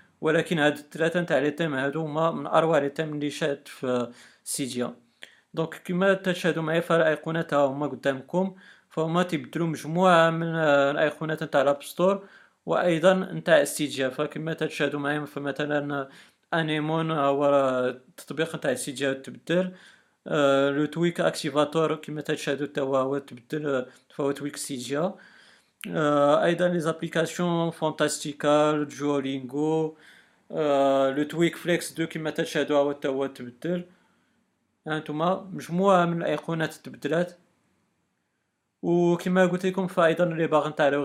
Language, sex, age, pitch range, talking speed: Arabic, male, 40-59, 145-165 Hz, 125 wpm